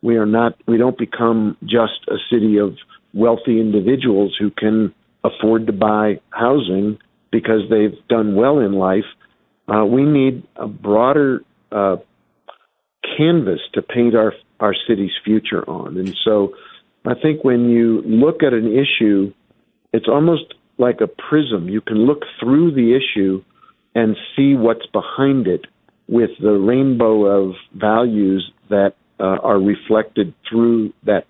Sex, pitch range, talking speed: male, 105-125 Hz, 145 wpm